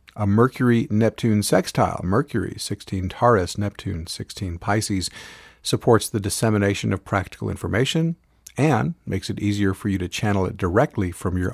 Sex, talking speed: male, 125 wpm